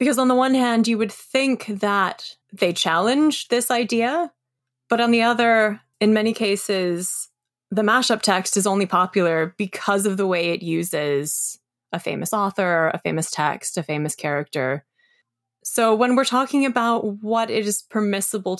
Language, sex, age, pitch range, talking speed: English, female, 20-39, 170-235 Hz, 160 wpm